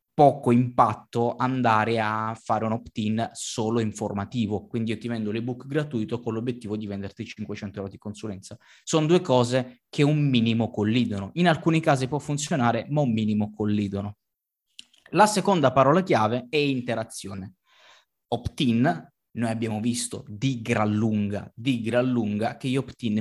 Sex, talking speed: male, 150 wpm